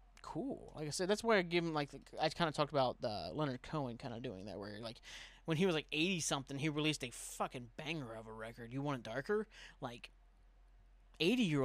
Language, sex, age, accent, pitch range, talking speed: English, male, 30-49, American, 125-160 Hz, 230 wpm